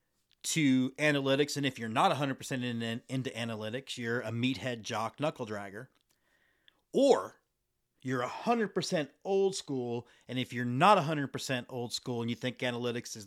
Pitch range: 115-140 Hz